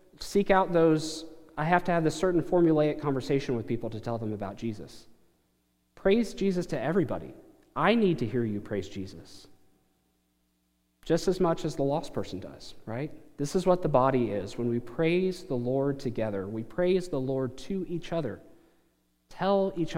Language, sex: English, male